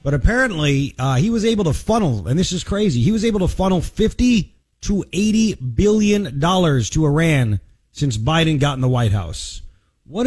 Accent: American